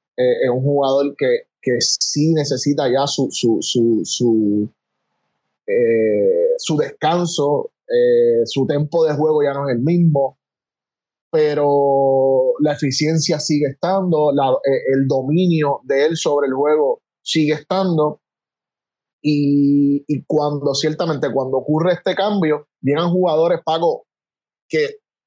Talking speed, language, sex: 130 wpm, Spanish, male